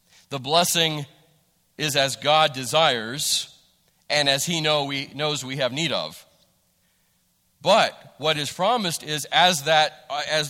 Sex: male